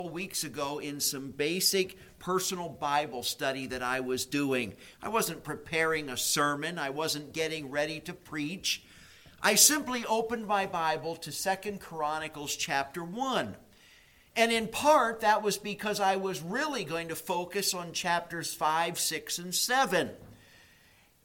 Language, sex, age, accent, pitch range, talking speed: English, male, 50-69, American, 150-210 Hz, 145 wpm